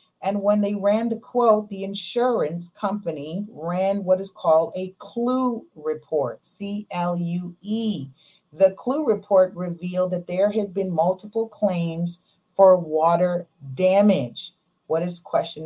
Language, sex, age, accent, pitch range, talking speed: English, female, 40-59, American, 170-215 Hz, 125 wpm